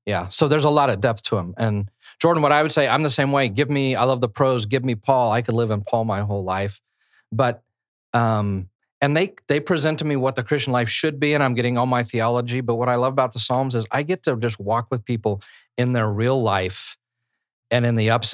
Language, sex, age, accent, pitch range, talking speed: English, male, 40-59, American, 105-130 Hz, 260 wpm